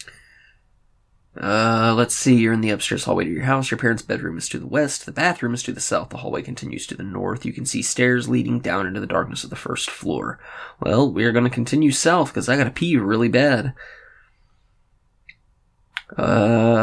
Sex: male